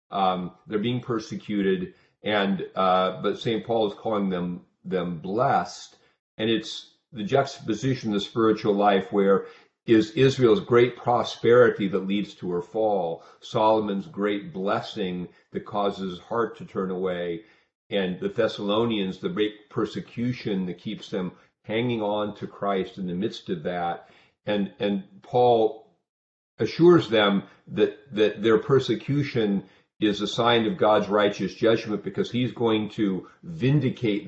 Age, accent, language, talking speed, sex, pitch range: 50-69, American, English, 150 wpm, male, 95-115 Hz